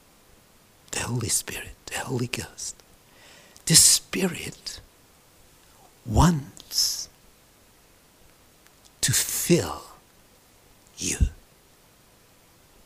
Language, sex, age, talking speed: English, male, 60-79, 55 wpm